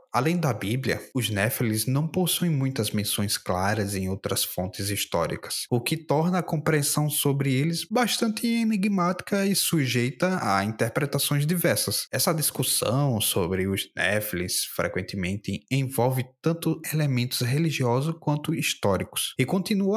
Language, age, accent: Portuguese, 20-39, Brazilian